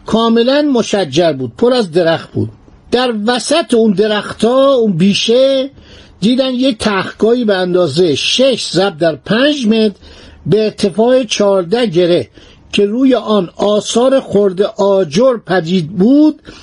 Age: 50-69